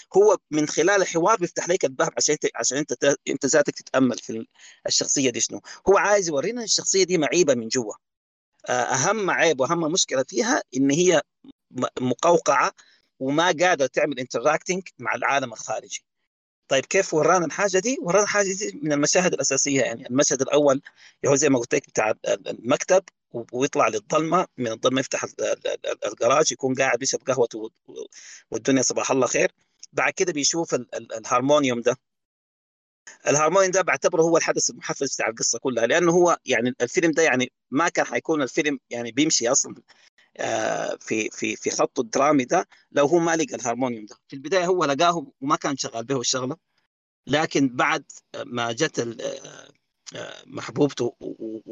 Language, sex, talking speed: Arabic, male, 150 wpm